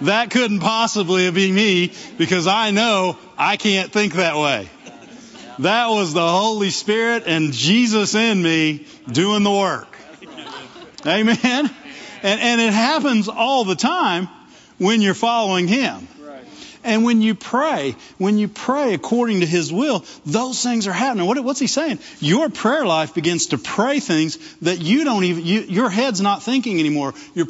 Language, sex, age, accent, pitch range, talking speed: English, male, 40-59, American, 165-225 Hz, 160 wpm